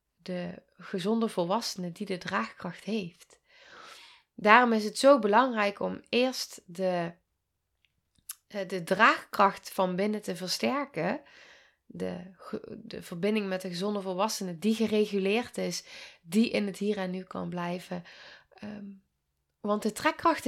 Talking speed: 125 wpm